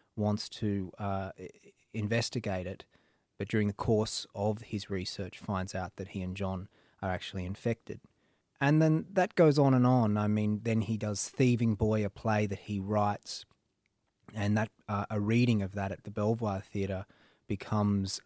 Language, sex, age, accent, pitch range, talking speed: English, male, 20-39, Australian, 100-115 Hz, 170 wpm